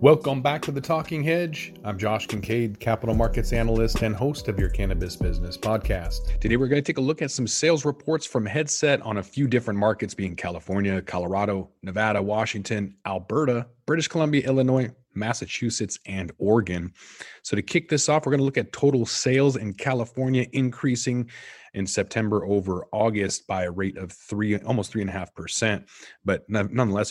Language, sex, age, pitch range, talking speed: English, male, 30-49, 95-125 Hz, 170 wpm